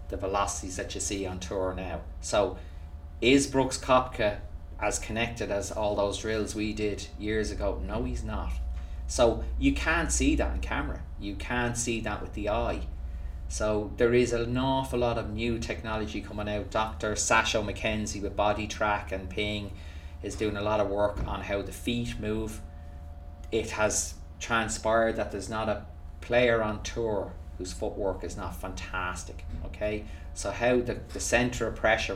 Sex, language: male, English